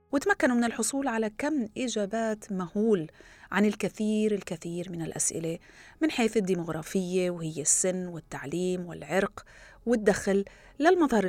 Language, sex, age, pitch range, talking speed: Arabic, female, 30-49, 170-225 Hz, 110 wpm